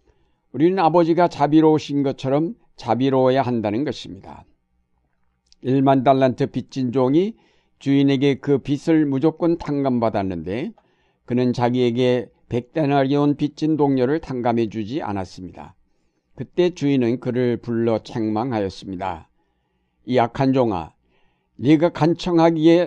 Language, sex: Korean, male